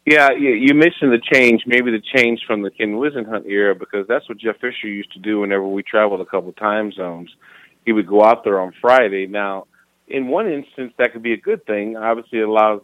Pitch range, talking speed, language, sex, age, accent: 100-120 Hz, 235 wpm, English, male, 30-49, American